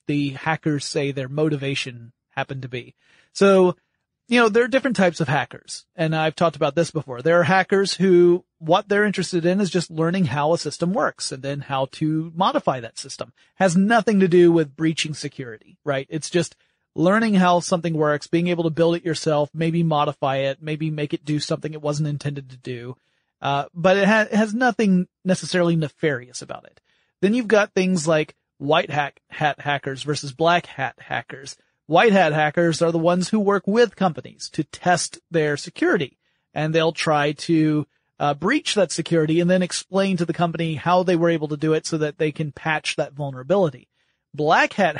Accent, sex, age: American, male, 30-49